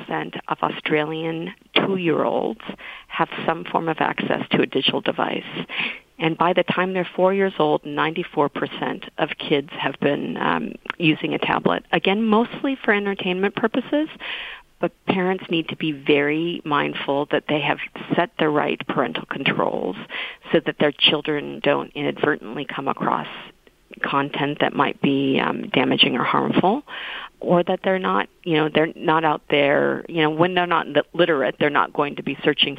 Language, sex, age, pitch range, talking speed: English, female, 40-59, 150-185 Hz, 160 wpm